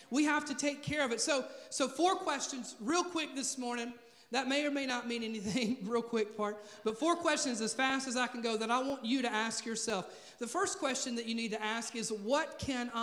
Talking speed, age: 240 wpm, 40-59